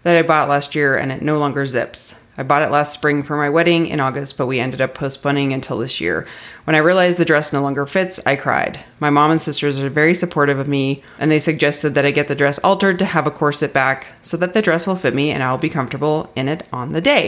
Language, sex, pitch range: English, female, 140-170 Hz